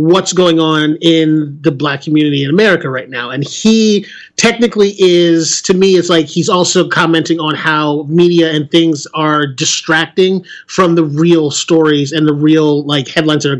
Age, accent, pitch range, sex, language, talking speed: 30-49, American, 155-185 Hz, male, English, 175 wpm